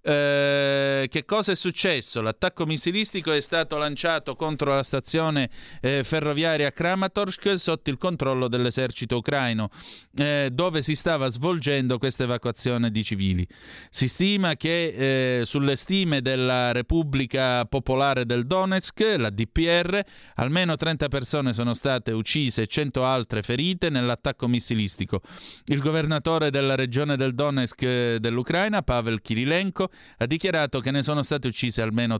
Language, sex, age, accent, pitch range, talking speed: Italian, male, 30-49, native, 120-160 Hz, 135 wpm